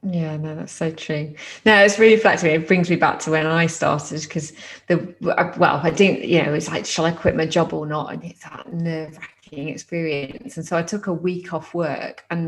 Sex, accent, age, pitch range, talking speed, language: female, British, 20-39, 155-180 Hz, 225 wpm, English